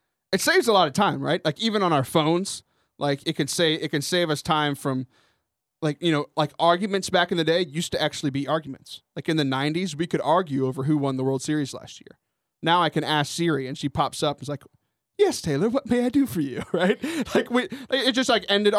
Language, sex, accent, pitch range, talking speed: English, male, American, 145-190 Hz, 250 wpm